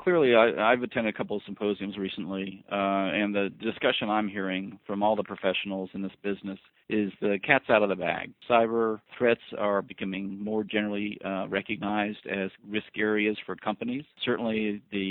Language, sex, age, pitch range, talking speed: English, male, 40-59, 100-115 Hz, 175 wpm